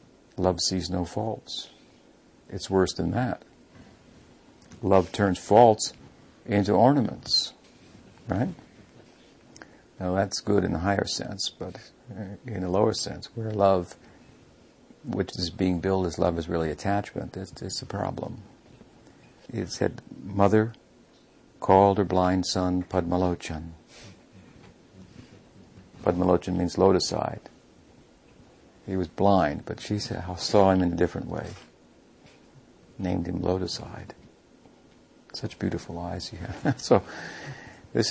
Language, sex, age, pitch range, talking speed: English, male, 60-79, 90-105 Hz, 115 wpm